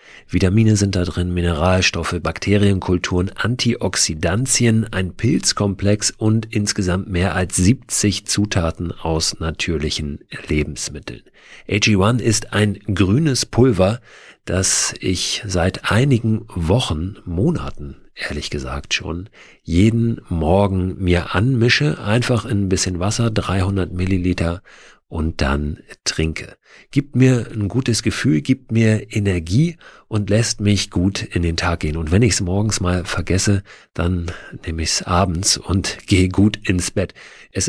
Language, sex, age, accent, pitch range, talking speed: German, male, 50-69, German, 90-110 Hz, 125 wpm